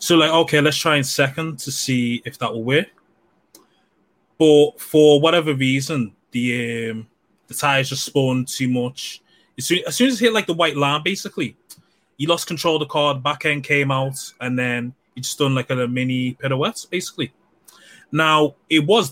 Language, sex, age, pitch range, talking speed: English, male, 20-39, 125-155 Hz, 190 wpm